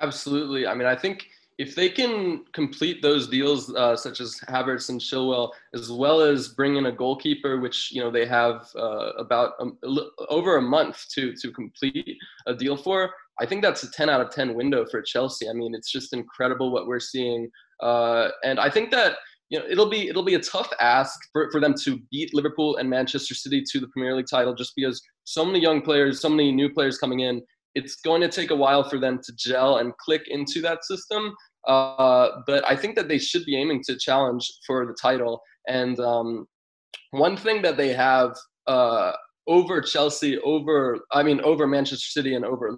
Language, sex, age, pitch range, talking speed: English, male, 20-39, 125-155 Hz, 205 wpm